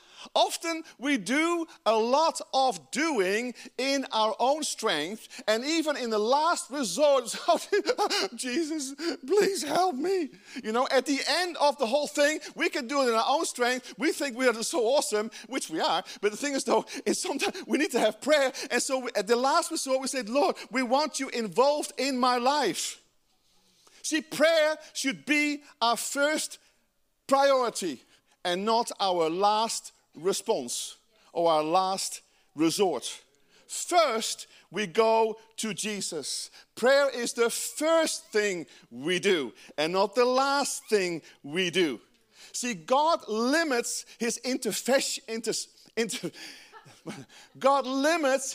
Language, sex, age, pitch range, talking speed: English, male, 40-59, 220-300 Hz, 150 wpm